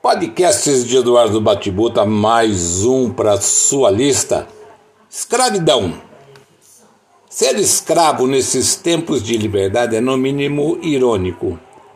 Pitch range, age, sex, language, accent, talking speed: 110-150 Hz, 60-79, male, Portuguese, Brazilian, 100 wpm